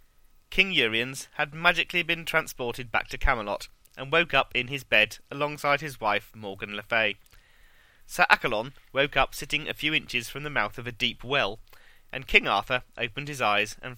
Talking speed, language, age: 185 wpm, English, 30-49